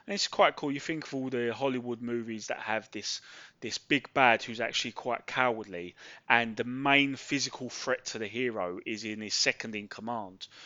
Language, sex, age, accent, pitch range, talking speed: English, male, 20-39, British, 110-140 Hz, 180 wpm